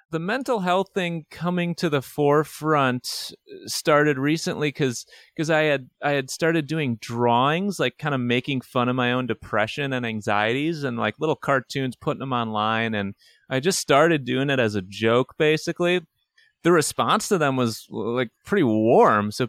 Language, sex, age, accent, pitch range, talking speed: English, male, 30-49, American, 115-160 Hz, 170 wpm